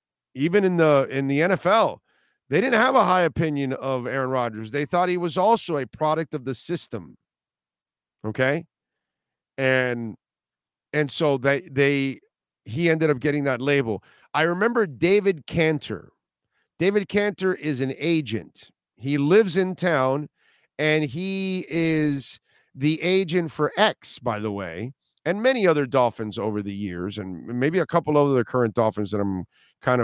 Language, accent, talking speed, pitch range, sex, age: English, American, 155 wpm, 125-170 Hz, male, 50-69